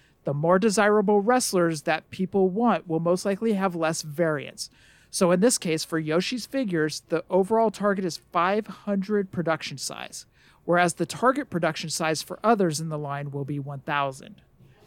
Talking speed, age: 160 wpm, 50-69